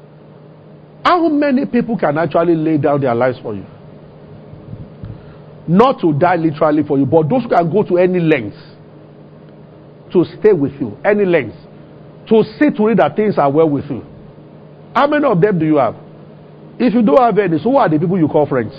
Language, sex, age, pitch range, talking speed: English, male, 50-69, 155-230 Hz, 195 wpm